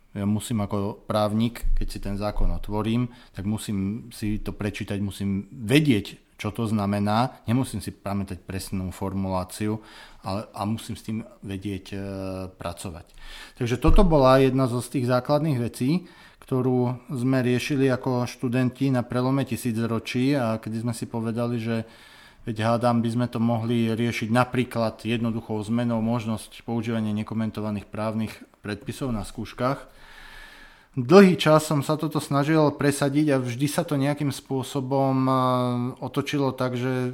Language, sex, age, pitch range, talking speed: Slovak, male, 40-59, 110-130 Hz, 145 wpm